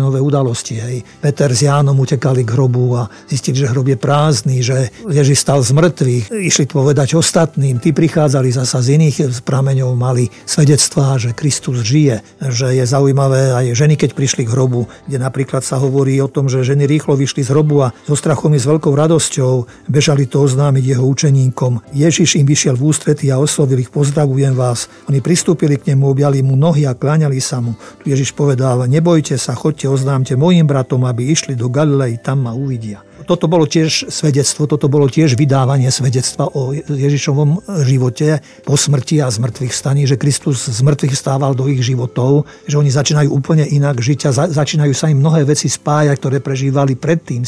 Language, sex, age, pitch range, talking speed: Slovak, male, 50-69, 130-150 Hz, 180 wpm